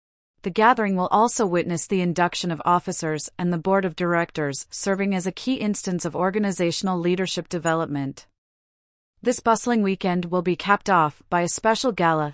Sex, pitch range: female, 170-200 Hz